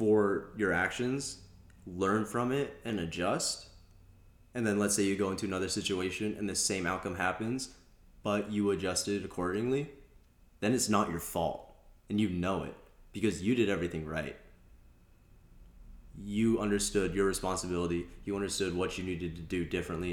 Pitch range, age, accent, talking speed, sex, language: 85-95 Hz, 20-39, American, 155 wpm, male, English